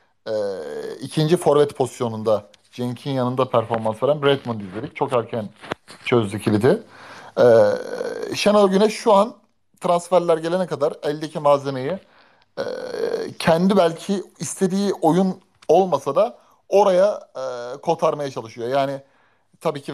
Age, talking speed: 30-49, 115 wpm